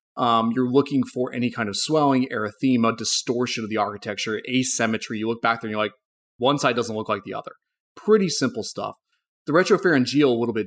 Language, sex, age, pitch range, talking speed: English, male, 30-49, 110-145 Hz, 200 wpm